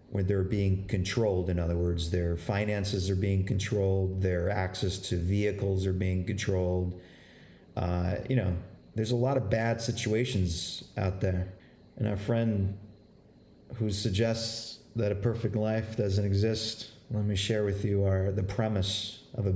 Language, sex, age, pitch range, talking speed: English, male, 40-59, 95-115 Hz, 155 wpm